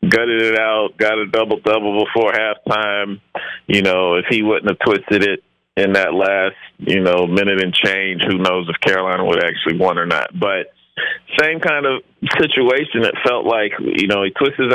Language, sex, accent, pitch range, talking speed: English, male, American, 90-100 Hz, 190 wpm